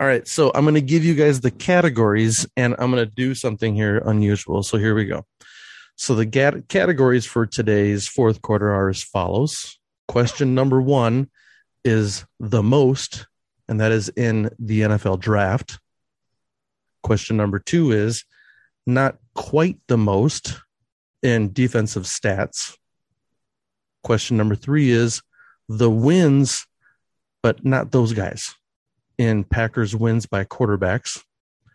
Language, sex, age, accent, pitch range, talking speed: English, male, 30-49, American, 105-130 Hz, 135 wpm